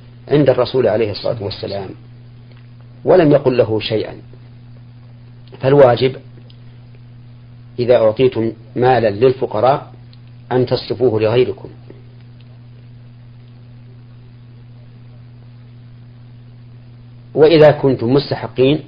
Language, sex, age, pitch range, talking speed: Arabic, male, 40-59, 120-125 Hz, 65 wpm